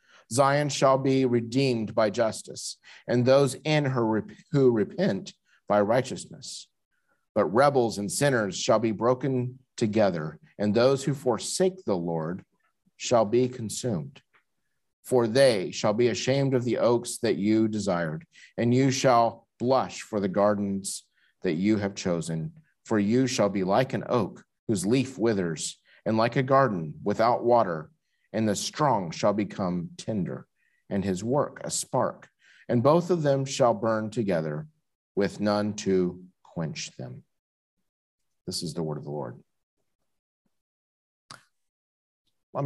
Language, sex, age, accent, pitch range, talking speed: English, male, 50-69, American, 90-130 Hz, 140 wpm